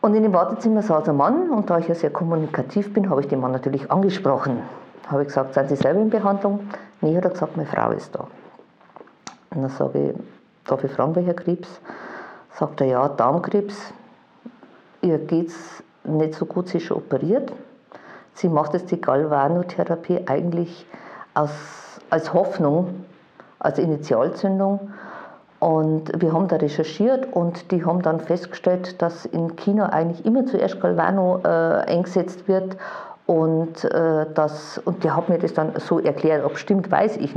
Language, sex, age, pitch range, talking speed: German, female, 50-69, 155-190 Hz, 170 wpm